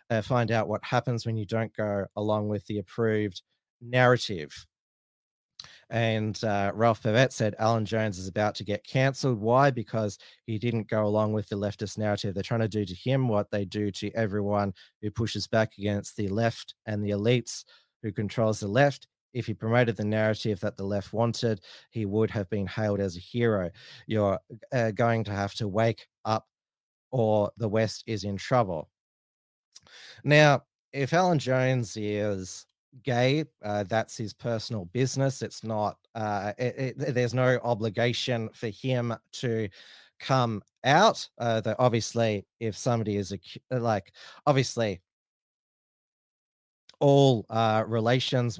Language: English